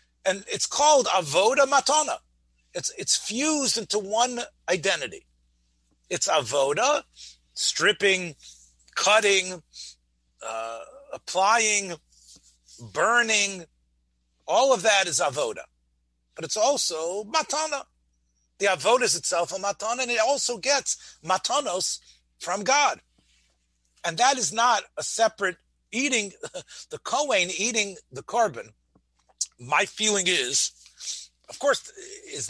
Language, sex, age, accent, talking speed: English, male, 50-69, American, 105 wpm